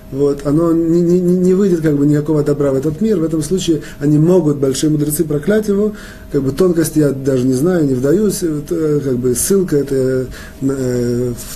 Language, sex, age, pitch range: Russian, male, 30-49, 125-165 Hz